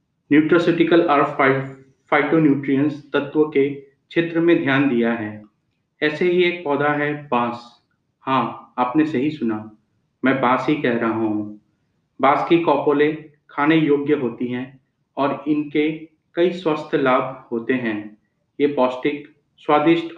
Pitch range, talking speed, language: 135-160 Hz, 130 wpm, Hindi